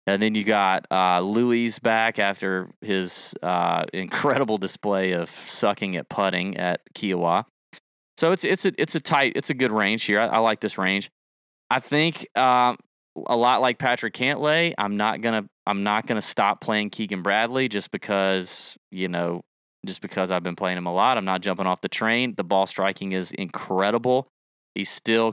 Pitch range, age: 90-120 Hz, 30-49